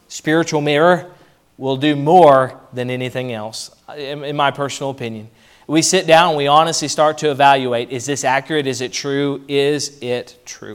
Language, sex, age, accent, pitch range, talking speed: English, male, 30-49, American, 120-155 Hz, 165 wpm